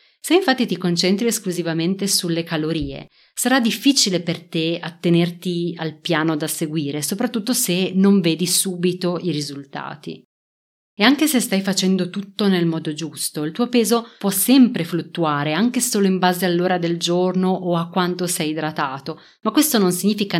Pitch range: 165-205 Hz